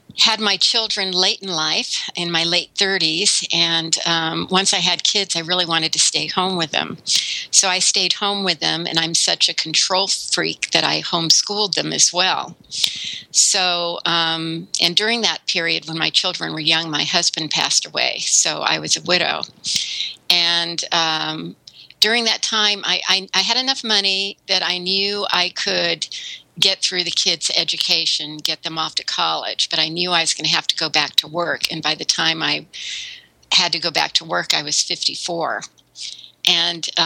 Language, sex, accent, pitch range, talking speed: English, female, American, 165-195 Hz, 190 wpm